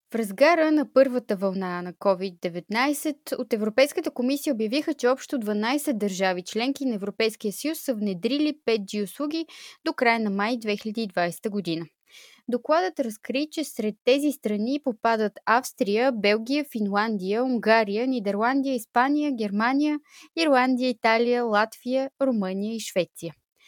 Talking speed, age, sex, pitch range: 125 wpm, 20-39, female, 205-270 Hz